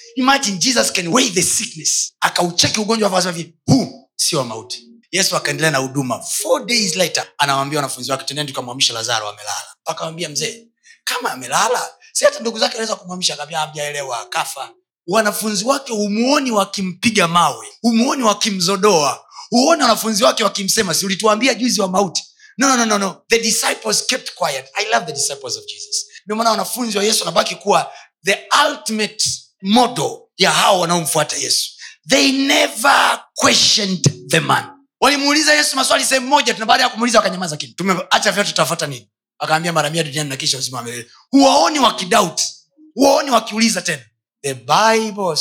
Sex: male